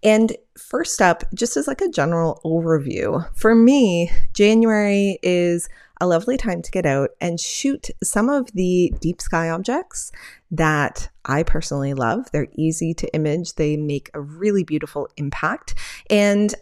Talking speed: 150 wpm